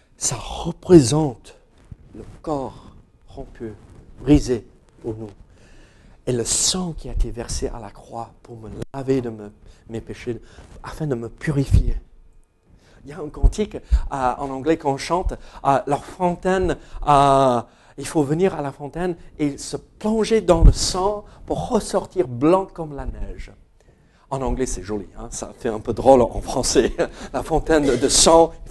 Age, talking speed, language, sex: 50-69, 165 wpm, French, male